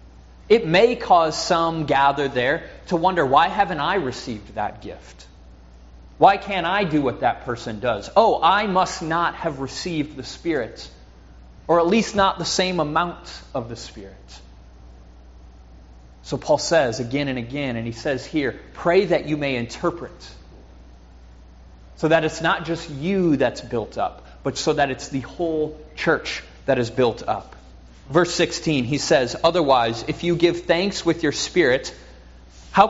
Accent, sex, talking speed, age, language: American, male, 160 wpm, 30-49, English